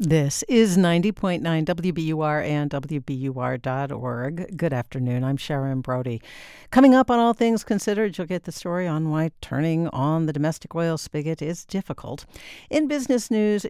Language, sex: English, female